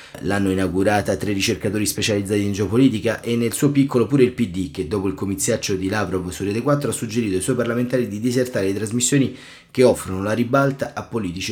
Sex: male